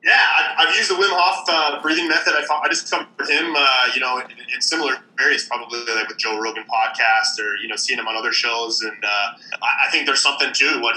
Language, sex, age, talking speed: English, male, 20-39, 250 wpm